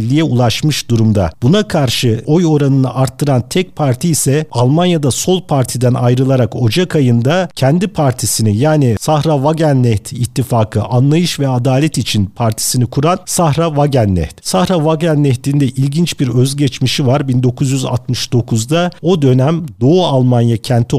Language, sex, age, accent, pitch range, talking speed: Turkish, male, 50-69, native, 125-155 Hz, 125 wpm